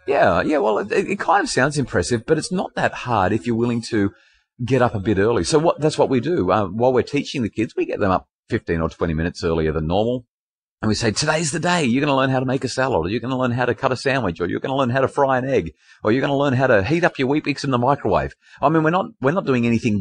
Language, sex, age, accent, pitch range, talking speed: English, male, 40-59, Australian, 90-130 Hz, 310 wpm